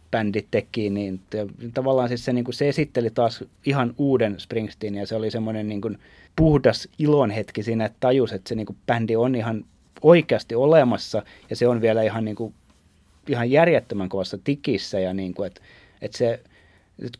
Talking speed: 170 wpm